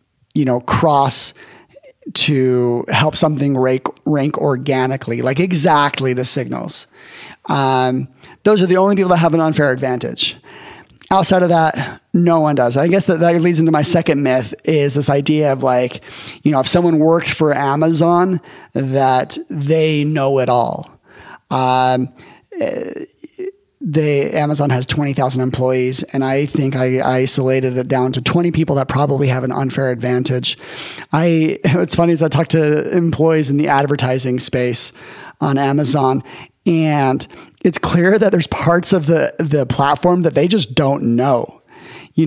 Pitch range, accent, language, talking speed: 130-165 Hz, American, English, 160 wpm